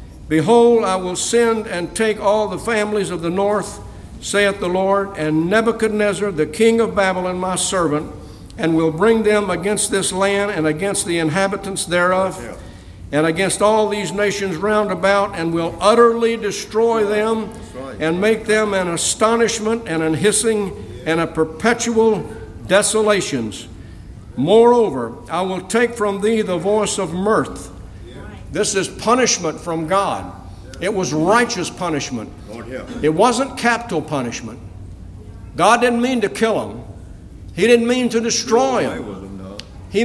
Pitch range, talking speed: 160-225 Hz, 140 wpm